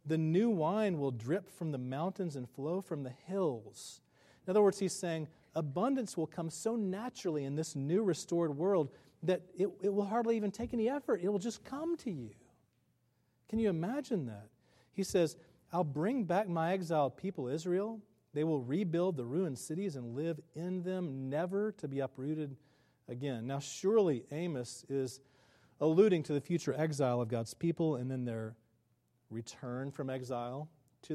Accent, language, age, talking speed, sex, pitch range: American, English, 40-59, 175 wpm, male, 130-190 Hz